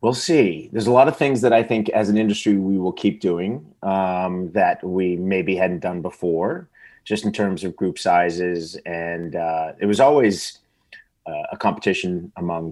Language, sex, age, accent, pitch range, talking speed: English, male, 30-49, American, 85-105 Hz, 185 wpm